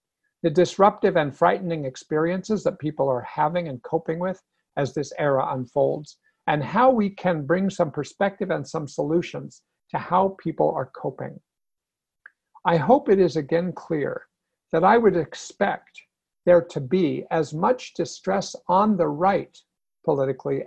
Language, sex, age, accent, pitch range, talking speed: English, male, 60-79, American, 150-190 Hz, 150 wpm